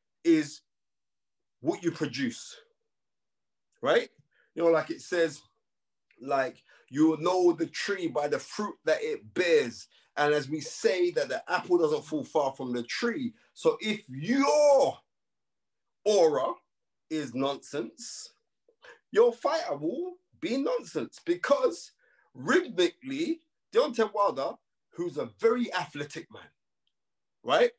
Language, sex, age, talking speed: English, male, 30-49, 120 wpm